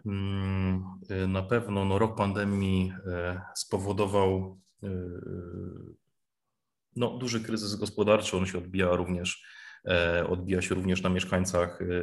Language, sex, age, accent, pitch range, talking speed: Polish, male, 30-49, native, 90-100 Hz, 95 wpm